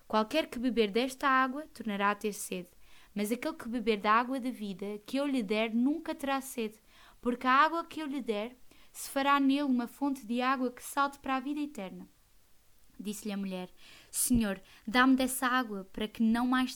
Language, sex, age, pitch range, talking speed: Portuguese, female, 20-39, 210-265 Hz, 195 wpm